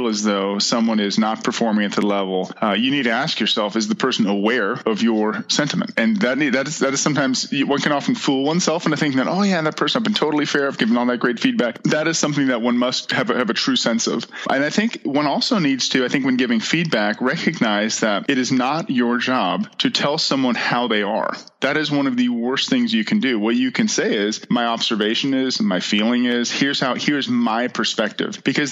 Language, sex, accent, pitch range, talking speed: English, male, American, 120-170 Hz, 240 wpm